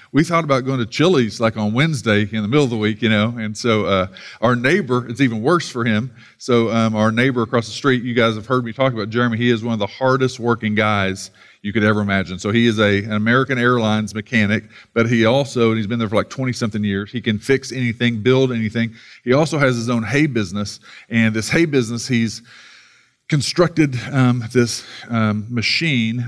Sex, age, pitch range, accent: male, 40-59, 105-125 Hz, American